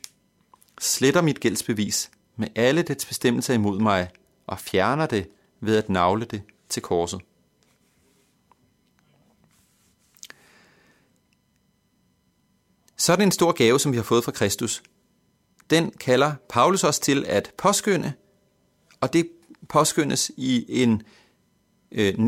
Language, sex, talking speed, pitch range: Danish, male, 115 wpm, 105-145 Hz